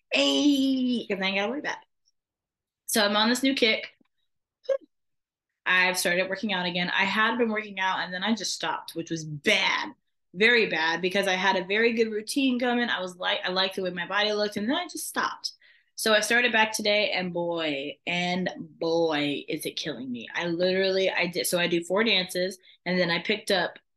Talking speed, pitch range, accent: 205 wpm, 180-225 Hz, American